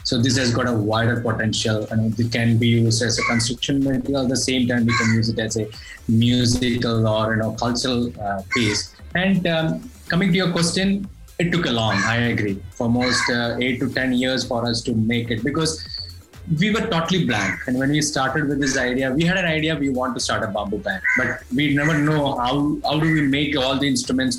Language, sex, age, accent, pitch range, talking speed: English, male, 20-39, Indian, 115-145 Hz, 225 wpm